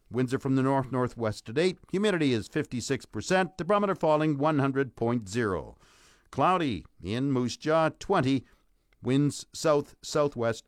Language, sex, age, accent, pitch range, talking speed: English, male, 60-79, American, 130-180 Hz, 110 wpm